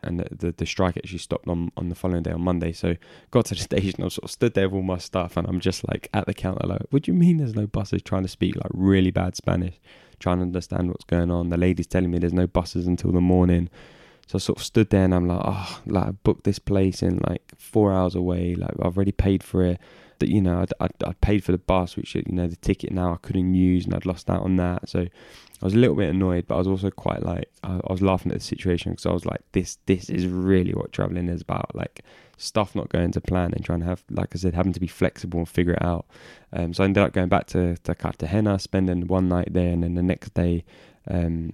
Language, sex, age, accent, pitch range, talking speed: English, male, 10-29, British, 85-95 Hz, 275 wpm